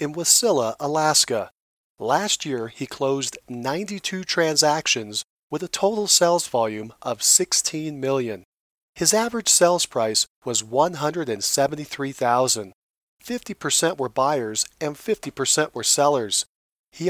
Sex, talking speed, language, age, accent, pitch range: male, 110 wpm, English, 40-59, American, 130-175 Hz